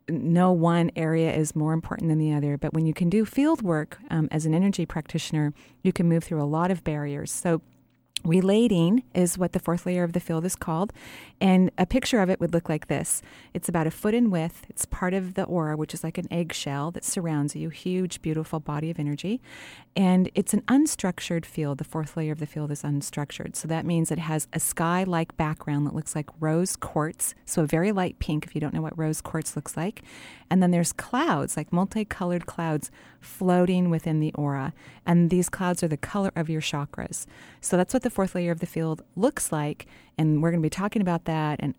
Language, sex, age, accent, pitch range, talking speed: English, female, 30-49, American, 155-185 Hz, 225 wpm